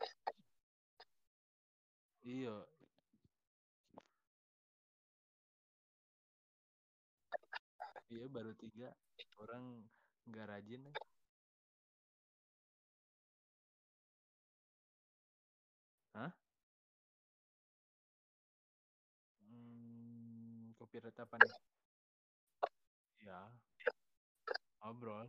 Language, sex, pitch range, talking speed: Indonesian, male, 115-160 Hz, 35 wpm